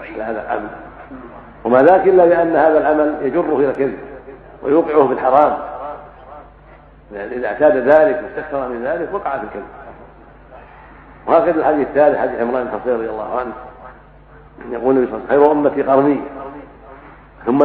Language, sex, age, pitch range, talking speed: Arabic, male, 60-79, 130-150 Hz, 130 wpm